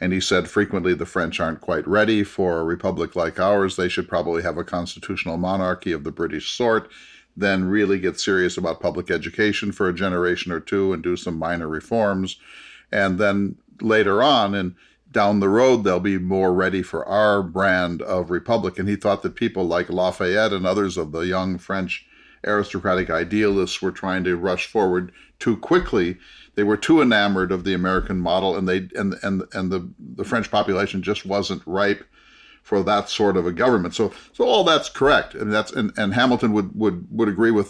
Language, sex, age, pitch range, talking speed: English, male, 50-69, 90-105 Hz, 195 wpm